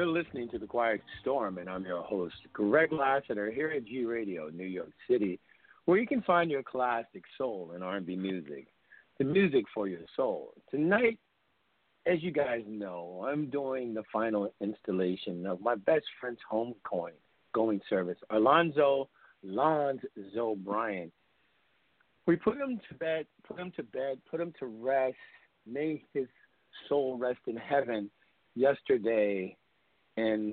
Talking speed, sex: 150 wpm, male